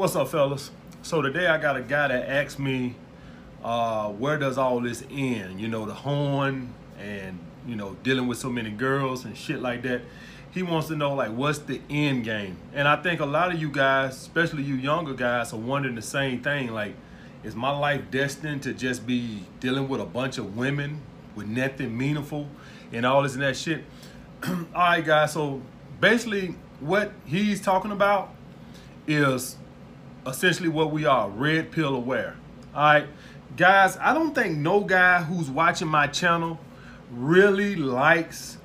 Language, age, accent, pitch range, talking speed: English, 30-49, American, 130-160 Hz, 175 wpm